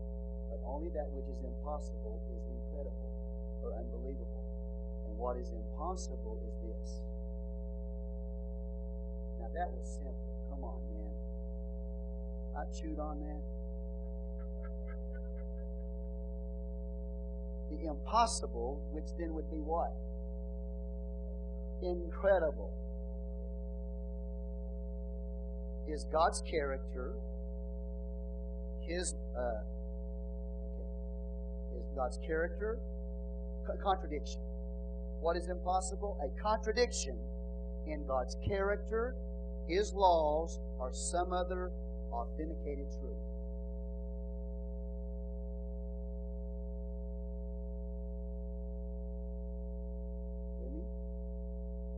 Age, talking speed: 40-59, 70 wpm